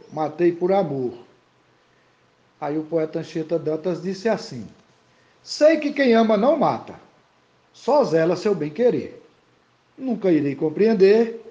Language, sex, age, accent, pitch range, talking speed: Portuguese, male, 60-79, Brazilian, 155-200 Hz, 125 wpm